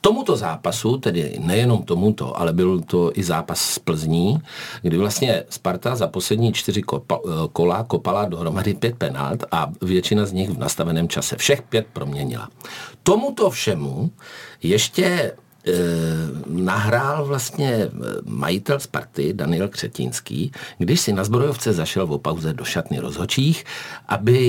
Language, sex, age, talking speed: Czech, male, 50-69, 130 wpm